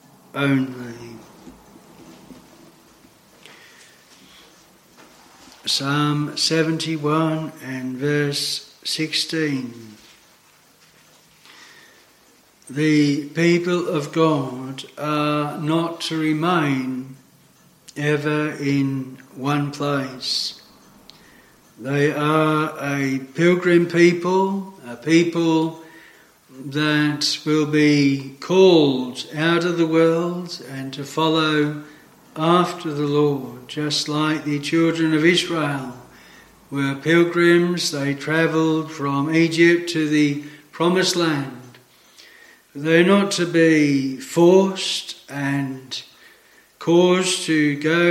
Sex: male